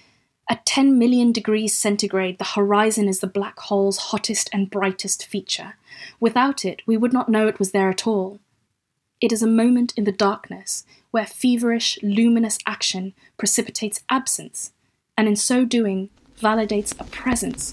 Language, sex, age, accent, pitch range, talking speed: English, female, 20-39, British, 200-245 Hz, 155 wpm